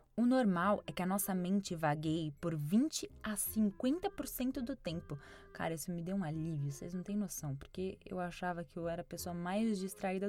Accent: Brazilian